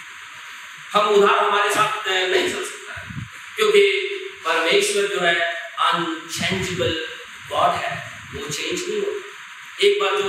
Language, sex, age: Hindi, male, 50-69